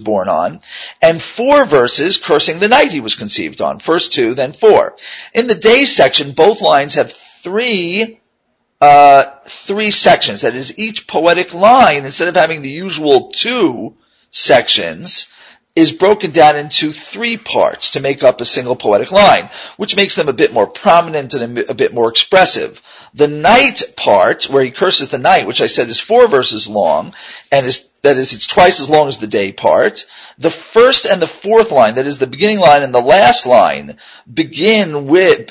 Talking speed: 180 wpm